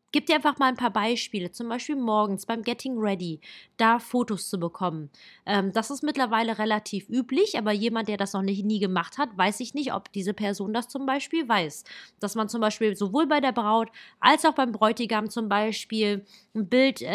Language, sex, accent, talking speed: German, female, German, 195 wpm